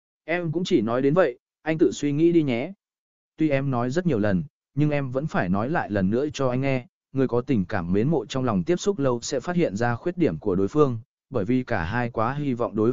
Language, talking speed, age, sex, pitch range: Vietnamese, 265 wpm, 20-39, male, 115-150 Hz